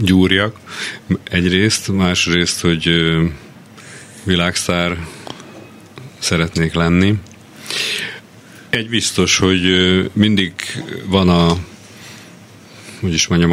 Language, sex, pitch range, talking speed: Hungarian, male, 85-100 Hz, 60 wpm